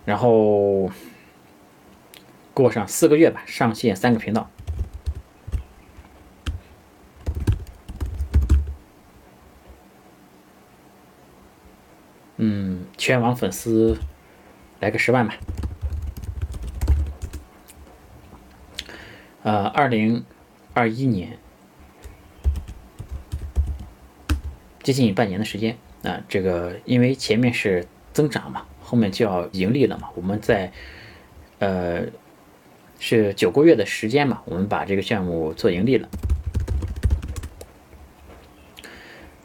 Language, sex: Chinese, male